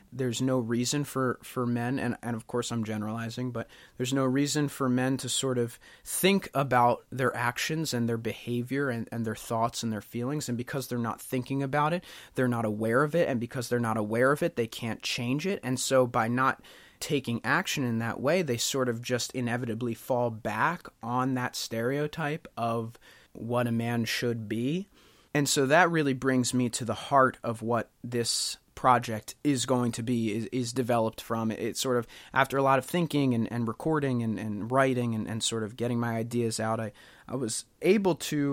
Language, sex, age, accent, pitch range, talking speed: English, male, 30-49, American, 115-135 Hz, 205 wpm